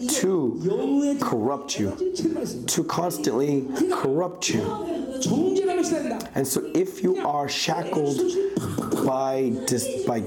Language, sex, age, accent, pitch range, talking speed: English, male, 40-59, American, 190-315 Hz, 95 wpm